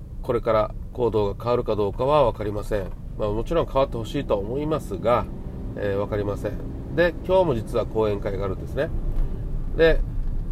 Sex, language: male, Japanese